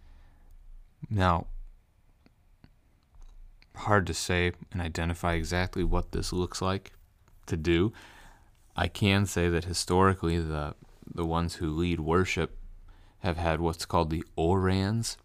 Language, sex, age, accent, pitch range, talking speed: English, male, 30-49, American, 80-95 Hz, 120 wpm